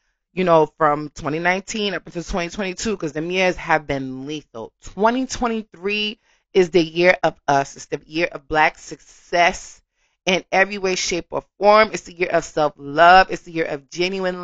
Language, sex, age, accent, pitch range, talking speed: English, female, 30-49, American, 165-205 Hz, 170 wpm